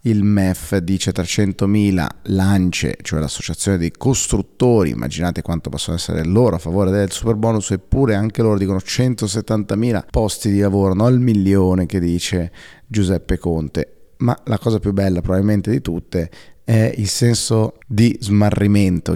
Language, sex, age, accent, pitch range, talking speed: Italian, male, 30-49, native, 90-105 Hz, 145 wpm